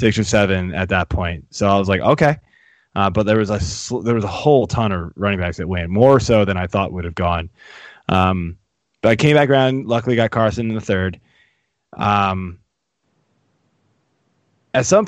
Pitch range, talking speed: 100-135 Hz, 200 wpm